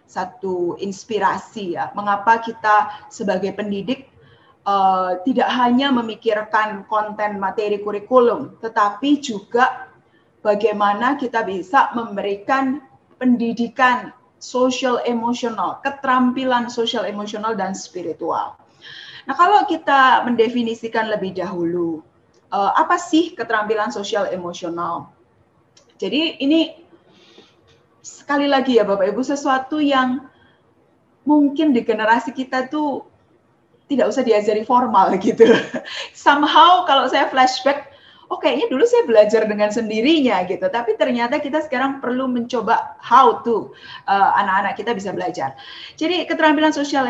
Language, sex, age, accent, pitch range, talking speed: Indonesian, female, 20-39, native, 210-280 Hz, 110 wpm